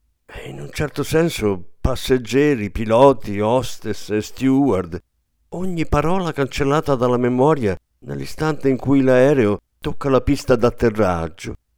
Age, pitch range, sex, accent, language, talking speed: 50-69, 95-130 Hz, male, native, Italian, 110 wpm